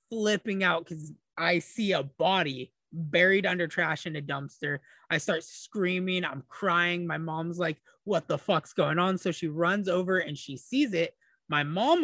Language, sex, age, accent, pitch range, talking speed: English, male, 20-39, American, 145-190 Hz, 180 wpm